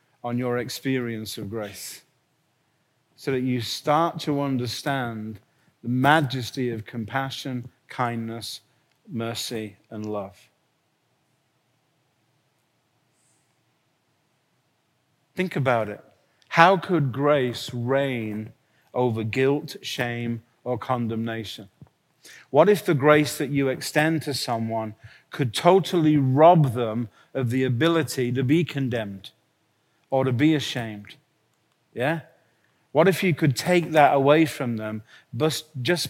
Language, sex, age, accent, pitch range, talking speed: English, male, 40-59, British, 120-155 Hz, 110 wpm